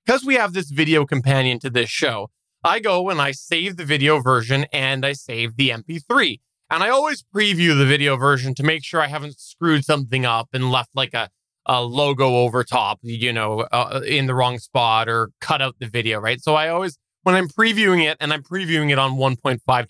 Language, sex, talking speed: English, male, 215 wpm